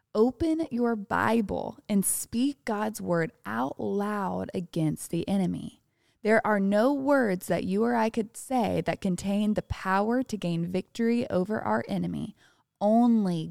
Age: 20-39